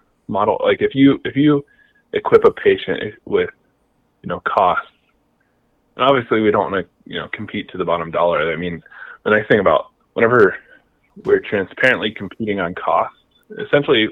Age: 20-39